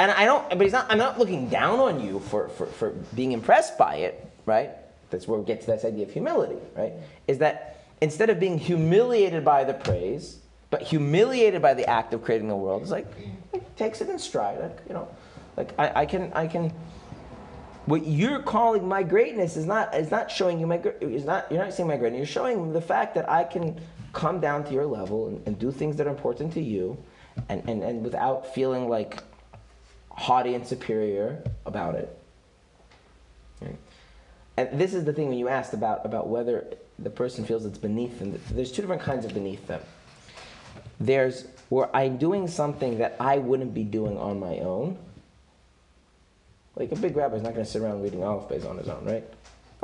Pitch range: 110-180 Hz